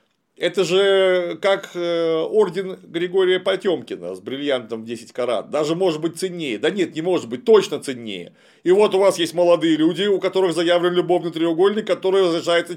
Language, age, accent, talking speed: Russian, 40-59, native, 165 wpm